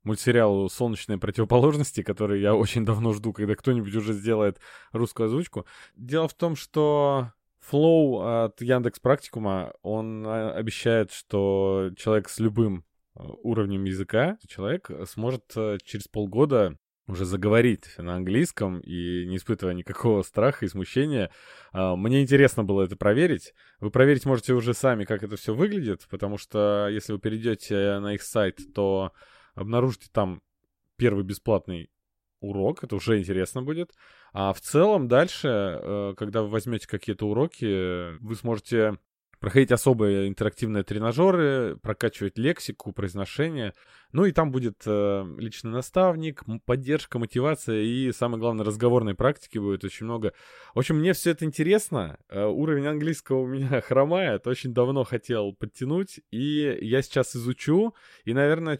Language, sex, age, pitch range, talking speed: Russian, male, 20-39, 100-130 Hz, 135 wpm